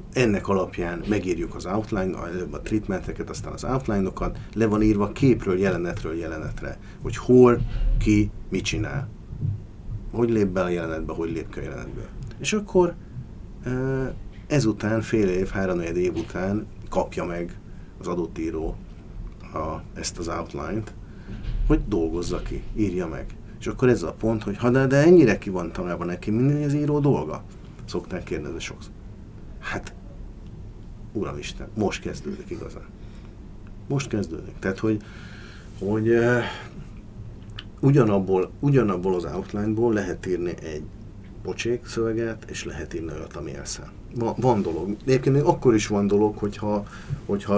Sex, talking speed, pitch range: male, 130 wpm, 95-115 Hz